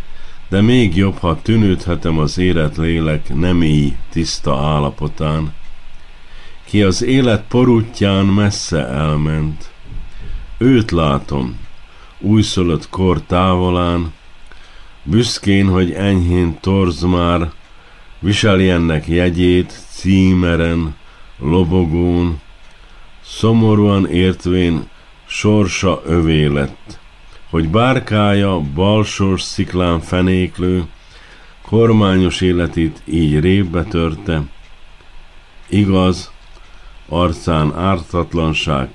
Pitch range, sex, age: 80-95 Hz, male, 50-69